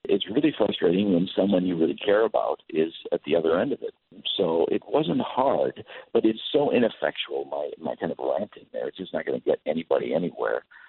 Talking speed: 210 wpm